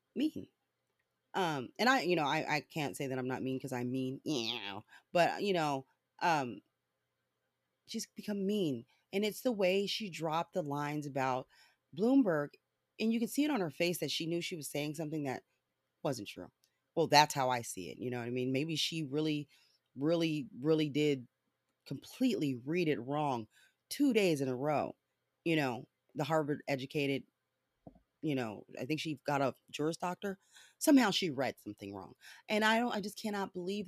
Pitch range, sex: 135-185 Hz, female